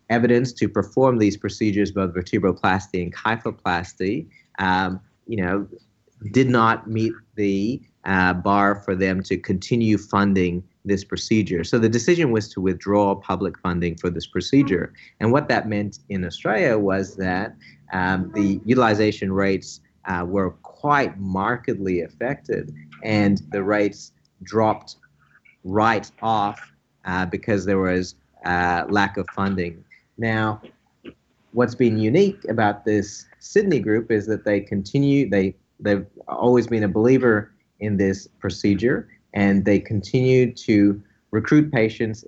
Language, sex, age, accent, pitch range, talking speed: English, male, 40-59, American, 95-115 Hz, 135 wpm